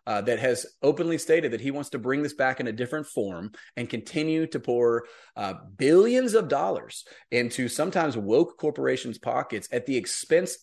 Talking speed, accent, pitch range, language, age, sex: 180 wpm, American, 110-140 Hz, English, 30-49, male